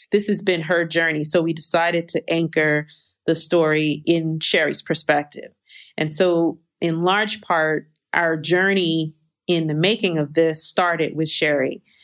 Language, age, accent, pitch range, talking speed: English, 40-59, American, 160-185 Hz, 150 wpm